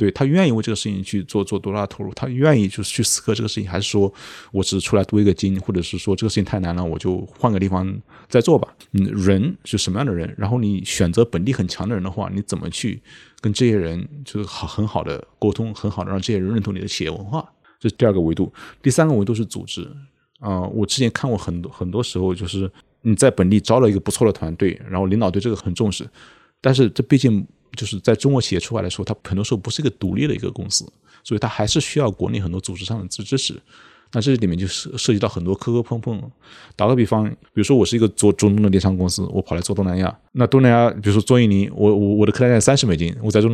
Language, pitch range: Chinese, 95-120 Hz